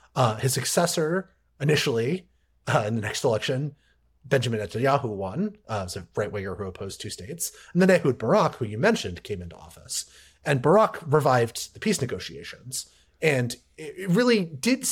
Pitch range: 100-155 Hz